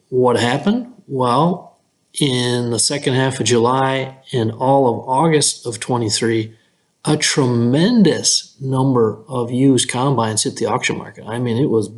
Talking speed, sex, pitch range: 145 wpm, male, 120-145 Hz